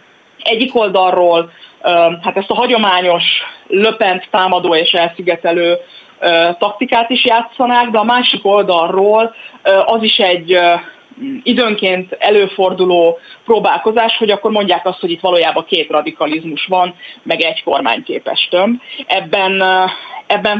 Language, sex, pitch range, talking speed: Hungarian, female, 175-220 Hz, 115 wpm